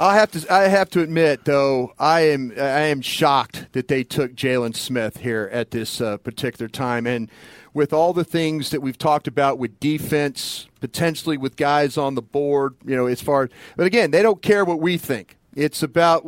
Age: 40-59